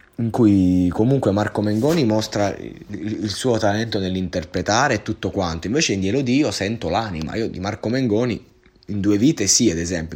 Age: 20-39